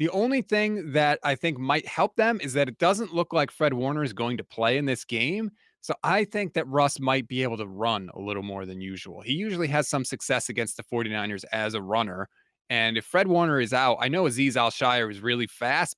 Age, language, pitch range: 20-39, English, 120-165 Hz